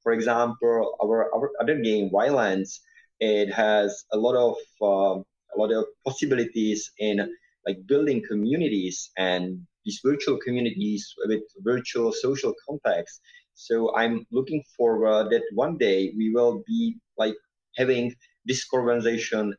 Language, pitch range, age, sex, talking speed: English, 105-140 Hz, 30-49, male, 130 wpm